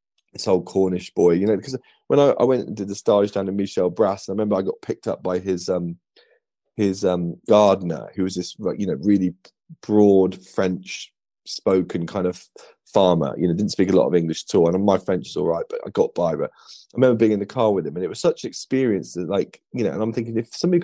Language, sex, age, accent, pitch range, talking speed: English, male, 30-49, British, 90-110 Hz, 250 wpm